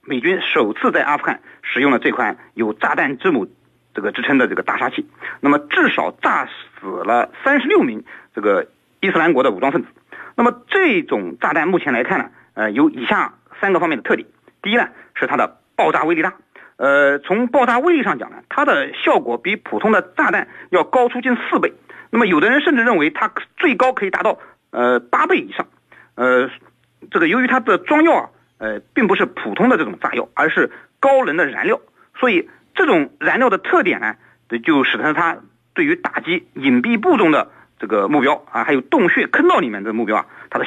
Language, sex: Chinese, male